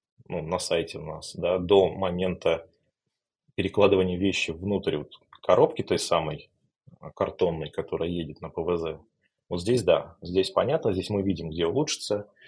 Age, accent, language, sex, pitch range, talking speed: 30-49, native, Russian, male, 90-140 Hz, 145 wpm